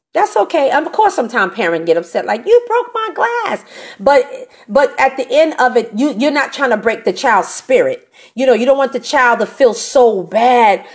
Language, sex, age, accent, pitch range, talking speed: English, female, 40-59, American, 230-305 Hz, 225 wpm